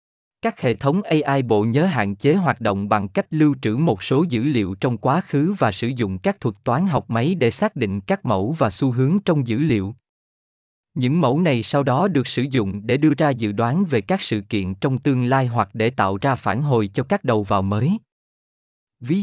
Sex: male